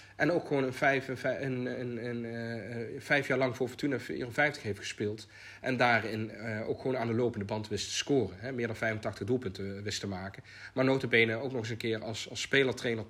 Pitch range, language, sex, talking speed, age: 110-130 Hz, Dutch, male, 225 wpm, 40-59